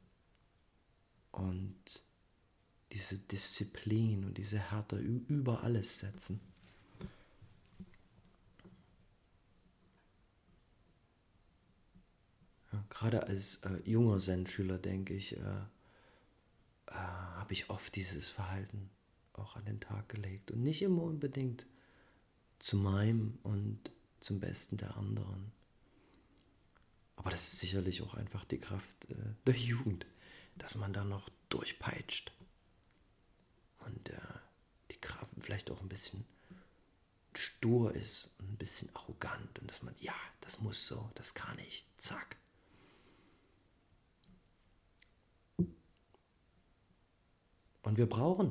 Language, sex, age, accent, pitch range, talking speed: German, male, 40-59, German, 95-115 Hz, 105 wpm